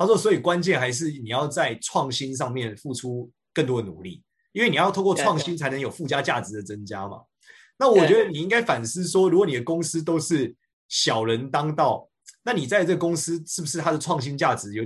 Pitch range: 120-175 Hz